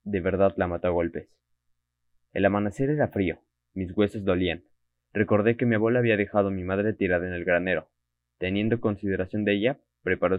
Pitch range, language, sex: 90-115 Hz, Spanish, male